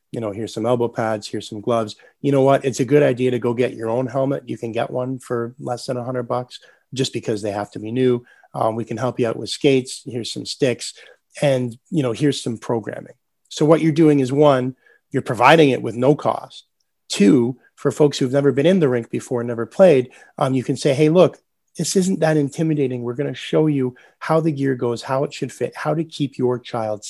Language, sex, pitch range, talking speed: English, male, 120-150 Hz, 235 wpm